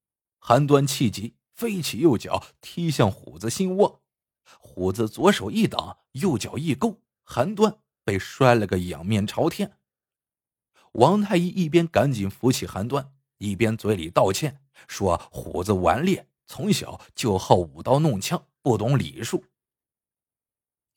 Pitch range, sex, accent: 110-175 Hz, male, native